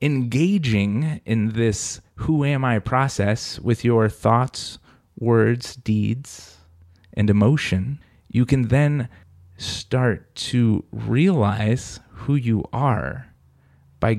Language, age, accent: English, 30-49, American